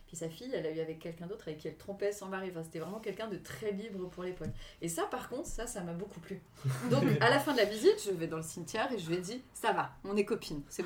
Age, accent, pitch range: 30-49, French, 165-220 Hz